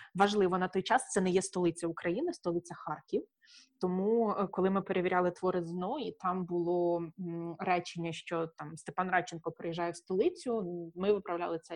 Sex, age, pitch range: female, 20-39, 170-205 Hz